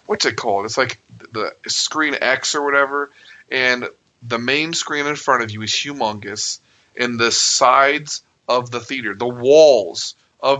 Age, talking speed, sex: 30-49, 165 wpm, male